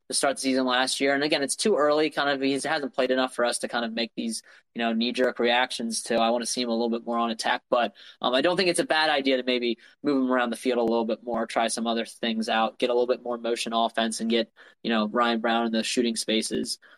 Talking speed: 290 wpm